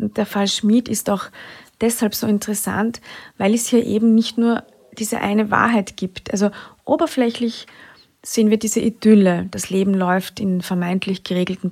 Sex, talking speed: female, 155 wpm